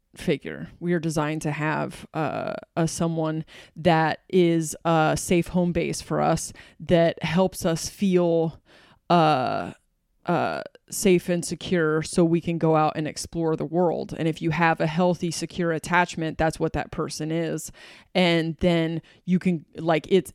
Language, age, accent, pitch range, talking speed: English, 20-39, American, 160-180 Hz, 160 wpm